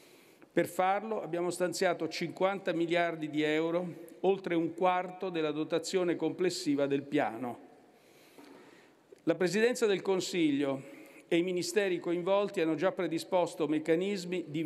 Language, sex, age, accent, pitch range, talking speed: Italian, male, 50-69, native, 160-195 Hz, 120 wpm